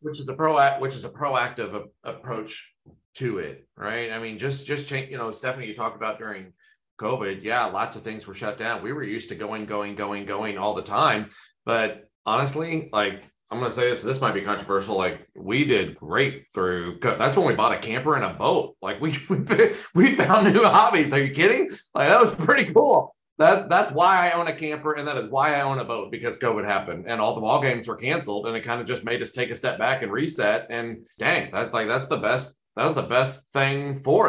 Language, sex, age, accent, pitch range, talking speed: English, male, 40-59, American, 110-150 Hz, 235 wpm